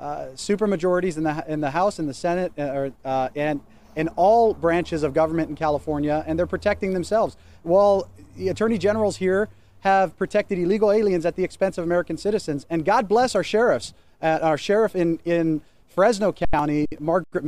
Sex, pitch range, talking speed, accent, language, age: male, 160-200 Hz, 180 wpm, American, English, 30-49